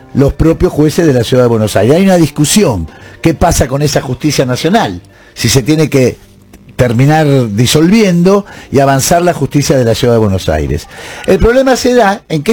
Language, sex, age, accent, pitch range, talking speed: Spanish, male, 50-69, Argentinian, 125-190 Hz, 190 wpm